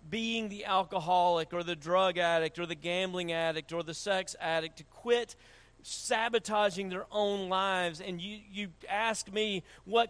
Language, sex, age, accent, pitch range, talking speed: English, male, 40-59, American, 130-195 Hz, 160 wpm